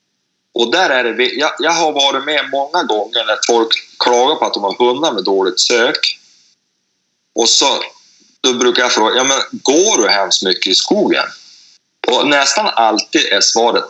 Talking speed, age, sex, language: 175 wpm, 30-49, male, Swedish